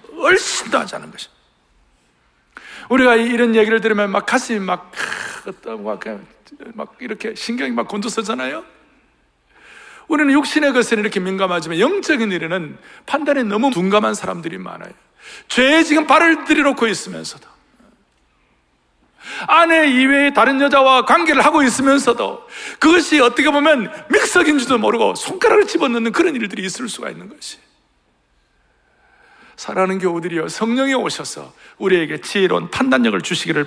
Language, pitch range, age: Korean, 215-310 Hz, 60-79